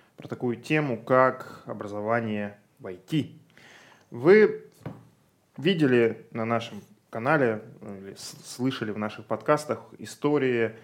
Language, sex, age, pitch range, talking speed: Russian, male, 20-39, 110-150 Hz, 100 wpm